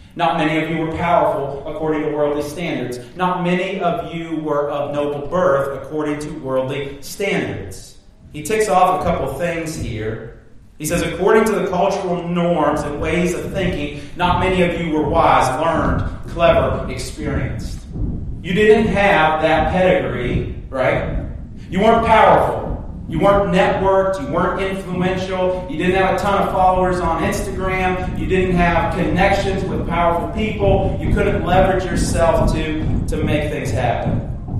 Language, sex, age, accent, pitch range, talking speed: English, male, 40-59, American, 145-185 Hz, 155 wpm